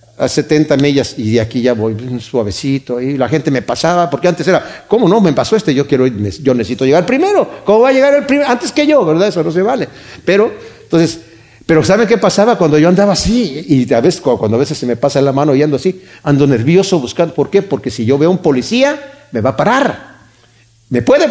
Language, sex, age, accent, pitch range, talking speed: Spanish, male, 50-69, Mexican, 130-205 Hz, 235 wpm